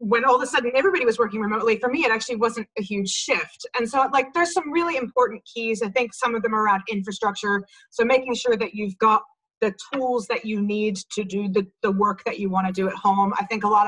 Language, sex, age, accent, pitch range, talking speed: English, female, 30-49, American, 210-245 Hz, 255 wpm